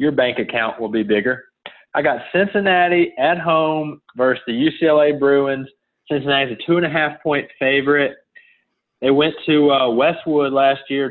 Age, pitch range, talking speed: 30-49, 130-150 Hz, 145 wpm